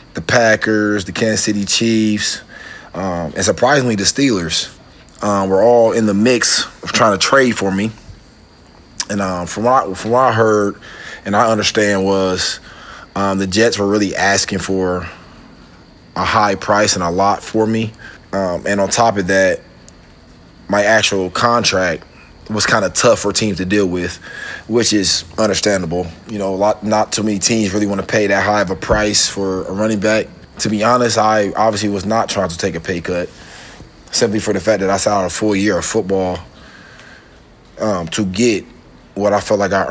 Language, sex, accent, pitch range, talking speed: English, male, American, 95-110 Hz, 185 wpm